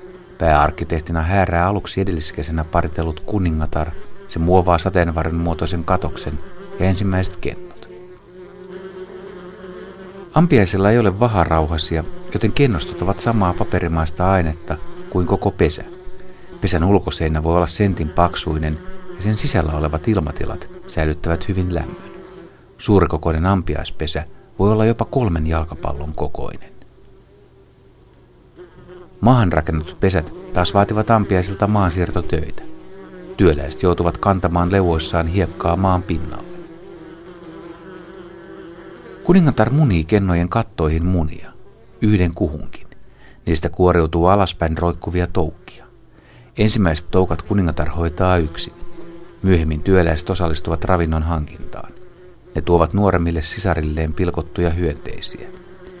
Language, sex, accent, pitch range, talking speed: Finnish, male, native, 85-110 Hz, 100 wpm